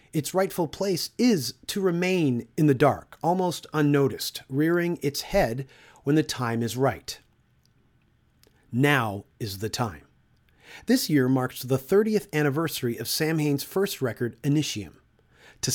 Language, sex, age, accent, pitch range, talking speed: English, male, 40-59, American, 130-170 Hz, 135 wpm